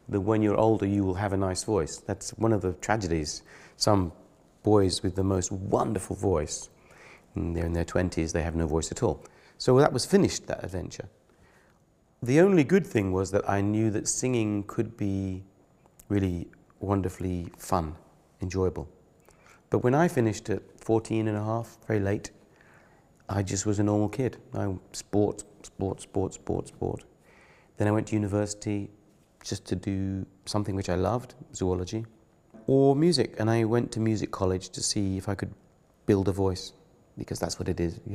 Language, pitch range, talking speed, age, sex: Slovak, 95-110 Hz, 175 wpm, 40-59, male